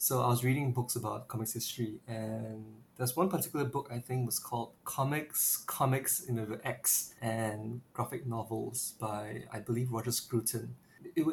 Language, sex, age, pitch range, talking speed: English, male, 20-39, 115-130 Hz, 175 wpm